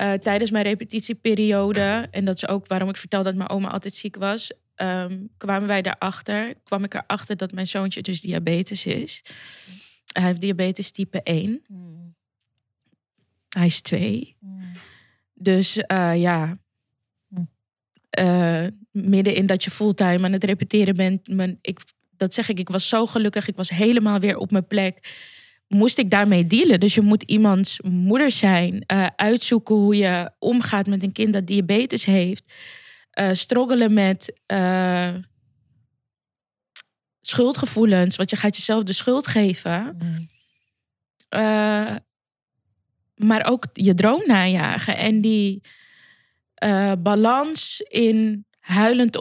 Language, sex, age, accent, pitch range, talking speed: Dutch, female, 20-39, Dutch, 185-215 Hz, 135 wpm